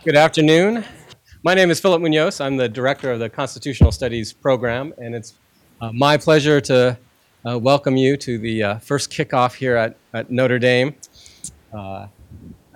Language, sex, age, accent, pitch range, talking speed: English, male, 40-59, American, 110-140 Hz, 165 wpm